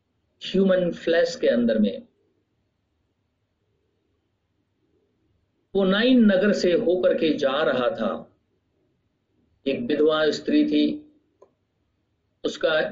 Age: 50-69